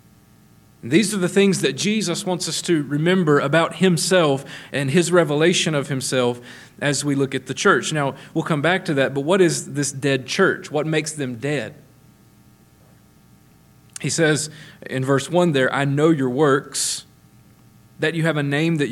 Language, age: English, 40-59